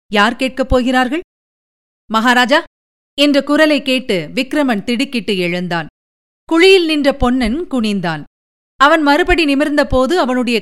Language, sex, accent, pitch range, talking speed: Tamil, female, native, 205-275 Hz, 100 wpm